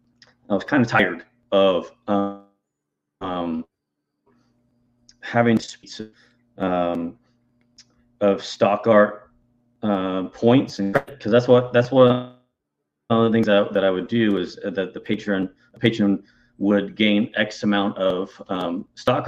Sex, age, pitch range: male, 30-49, 95-115 Hz